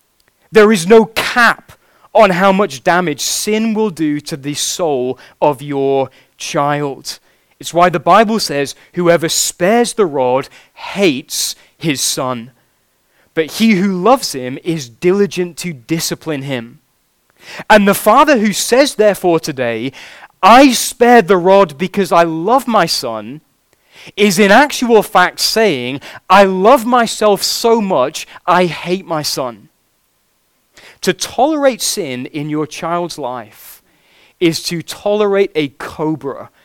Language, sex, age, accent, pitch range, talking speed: English, male, 20-39, British, 140-200 Hz, 135 wpm